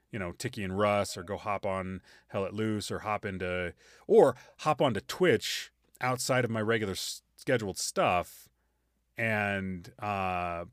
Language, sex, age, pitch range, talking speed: English, male, 30-49, 95-125 Hz, 150 wpm